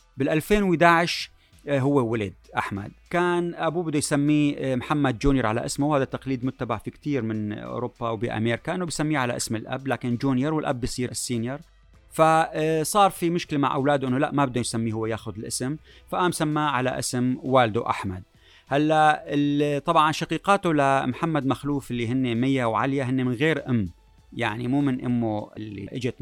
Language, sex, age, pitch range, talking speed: Arabic, male, 30-49, 120-160 Hz, 160 wpm